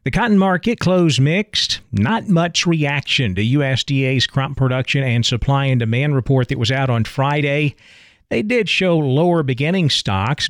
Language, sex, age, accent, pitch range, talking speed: English, male, 40-59, American, 125-160 Hz, 160 wpm